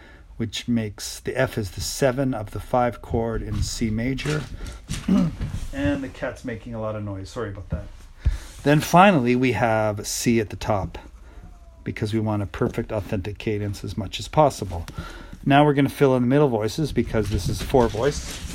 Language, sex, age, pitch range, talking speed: English, male, 40-59, 85-125 Hz, 190 wpm